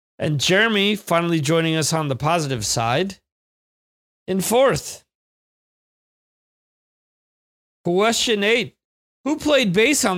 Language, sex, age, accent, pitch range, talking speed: English, male, 40-59, American, 130-180 Hz, 100 wpm